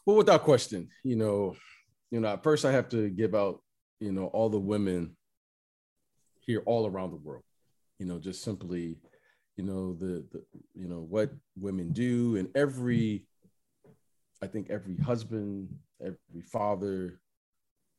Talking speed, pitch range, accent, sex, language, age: 150 wpm, 95-115 Hz, American, male, English, 40-59